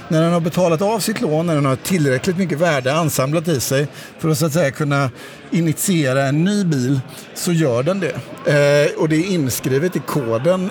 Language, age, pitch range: Swedish, 50-69, 135-175 Hz